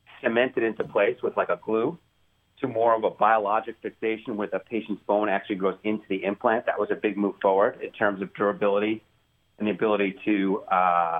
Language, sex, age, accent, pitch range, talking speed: English, male, 40-59, American, 100-120 Hz, 200 wpm